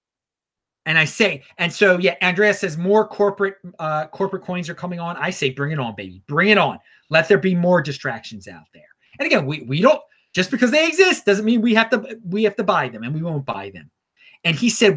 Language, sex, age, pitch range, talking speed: English, male, 30-49, 150-210 Hz, 235 wpm